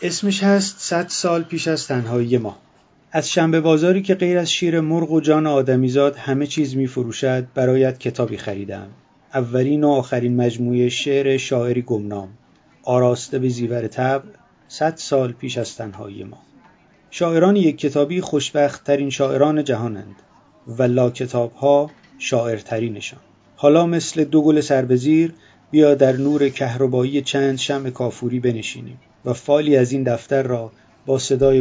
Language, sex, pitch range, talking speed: Persian, male, 125-145 Hz, 140 wpm